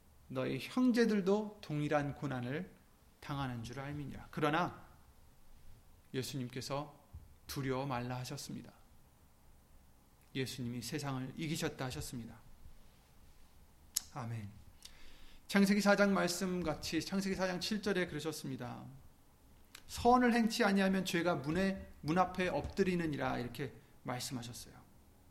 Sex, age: male, 30-49